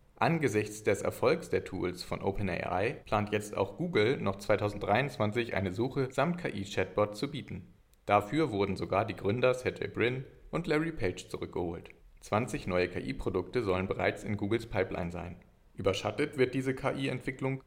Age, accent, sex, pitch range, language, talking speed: 40-59, German, male, 100-125 Hz, German, 145 wpm